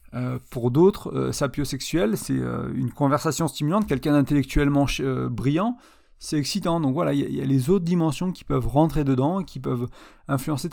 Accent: French